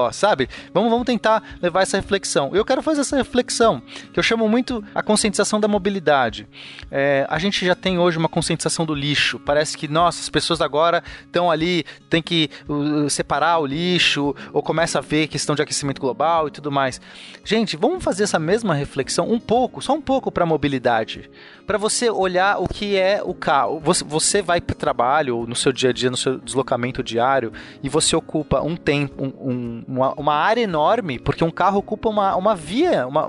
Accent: Brazilian